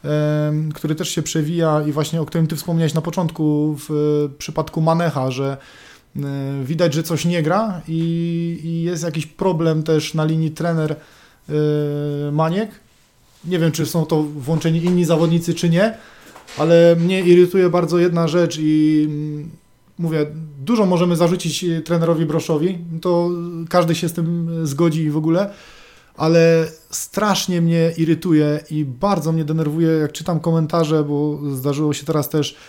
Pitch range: 150-175 Hz